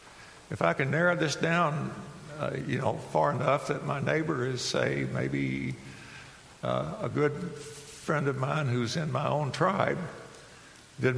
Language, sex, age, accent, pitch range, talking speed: English, male, 60-79, American, 125-155 Hz, 155 wpm